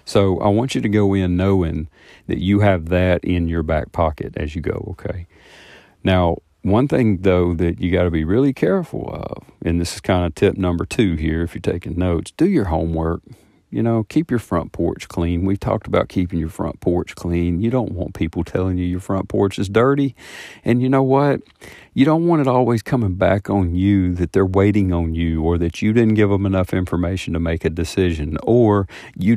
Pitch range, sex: 85-105 Hz, male